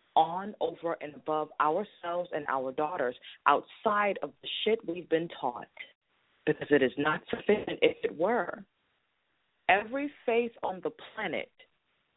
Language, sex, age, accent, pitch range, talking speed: English, female, 30-49, American, 160-240 Hz, 140 wpm